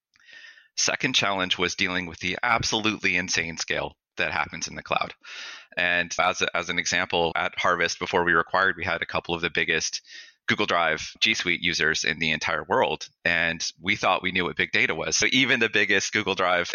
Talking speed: 195 wpm